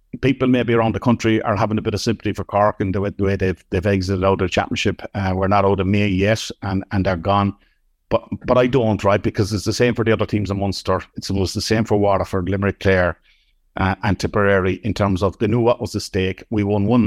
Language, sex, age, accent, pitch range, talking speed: English, male, 50-69, Irish, 95-110 Hz, 255 wpm